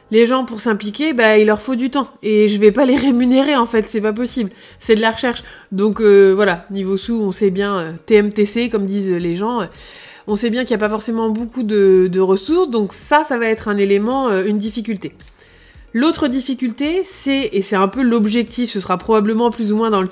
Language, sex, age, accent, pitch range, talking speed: French, female, 20-39, French, 195-250 Hz, 230 wpm